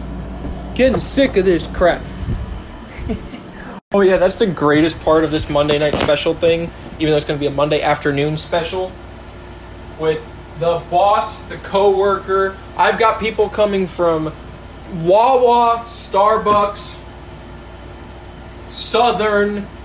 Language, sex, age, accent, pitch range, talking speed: English, male, 20-39, American, 160-215 Hz, 120 wpm